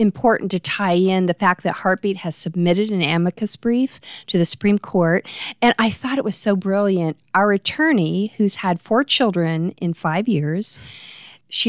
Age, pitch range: 40-59, 165-205 Hz